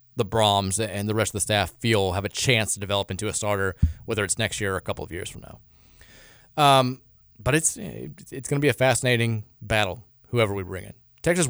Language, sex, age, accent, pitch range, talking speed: English, male, 30-49, American, 110-135 Hz, 225 wpm